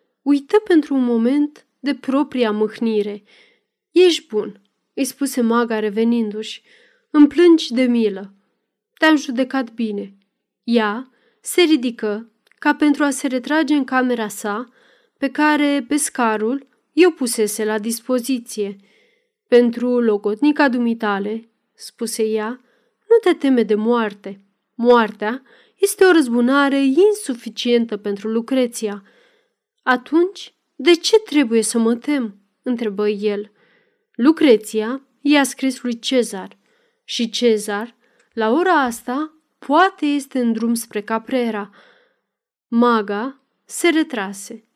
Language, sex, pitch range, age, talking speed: Romanian, female, 220-290 Hz, 30-49, 110 wpm